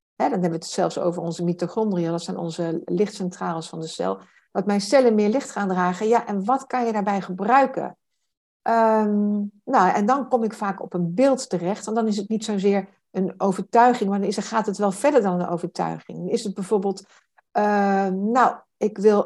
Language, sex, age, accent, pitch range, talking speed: Dutch, female, 60-79, Dutch, 180-225 Hz, 205 wpm